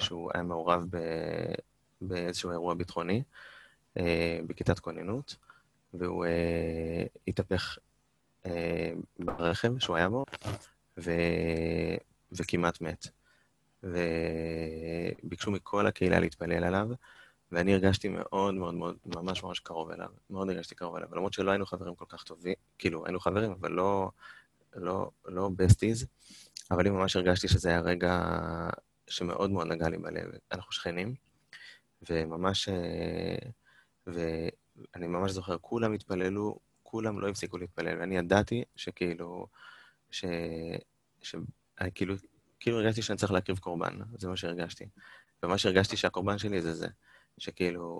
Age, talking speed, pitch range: 20-39, 120 wpm, 85-100 Hz